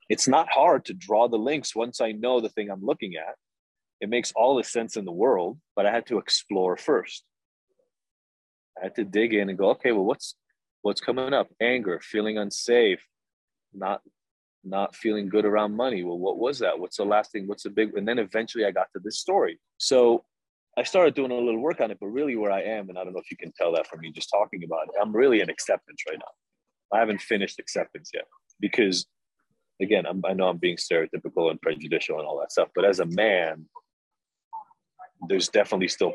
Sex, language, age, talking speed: male, English, 30-49, 215 wpm